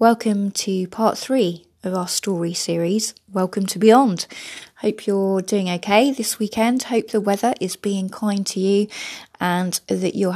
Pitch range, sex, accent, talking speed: 175-220 Hz, female, British, 160 wpm